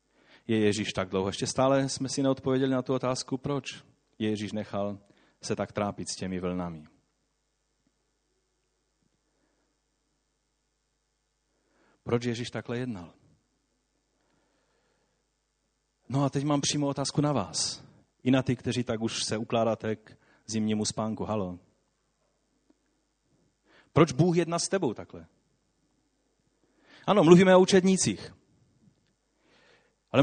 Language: Czech